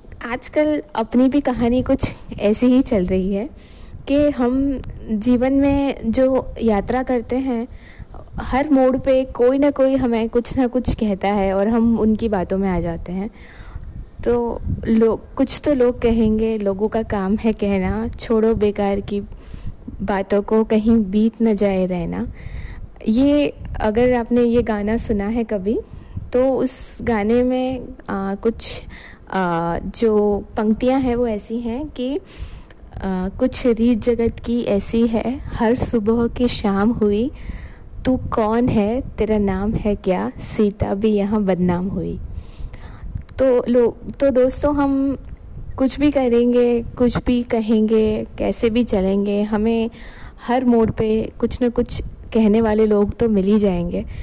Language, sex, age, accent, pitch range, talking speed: Hindi, female, 20-39, native, 205-245 Hz, 145 wpm